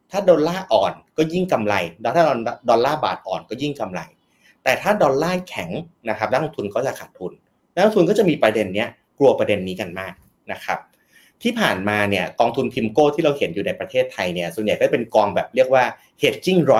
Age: 30-49